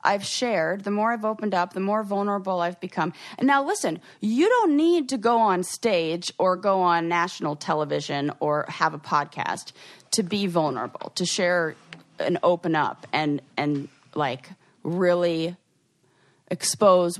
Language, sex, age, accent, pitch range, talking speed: English, female, 30-49, American, 155-205 Hz, 155 wpm